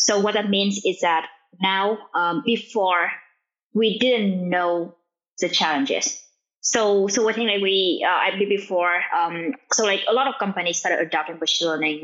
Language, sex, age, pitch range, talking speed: English, female, 20-39, 165-205 Hz, 180 wpm